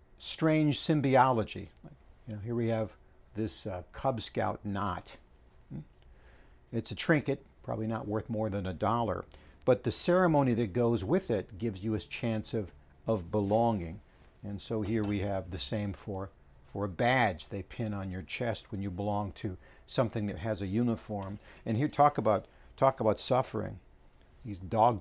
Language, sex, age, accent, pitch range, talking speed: English, male, 60-79, American, 75-120 Hz, 170 wpm